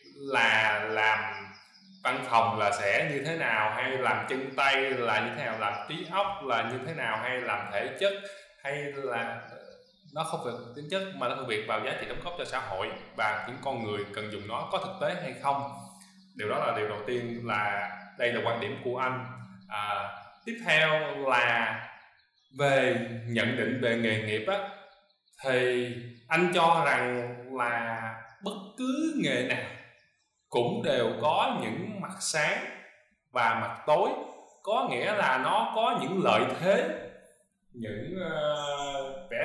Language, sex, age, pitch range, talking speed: Vietnamese, male, 20-39, 120-185 Hz, 170 wpm